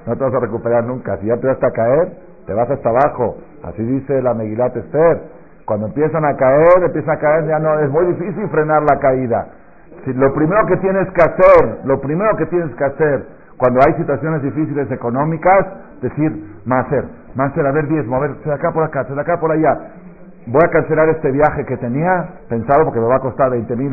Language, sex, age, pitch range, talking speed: Spanish, male, 50-69, 115-155 Hz, 215 wpm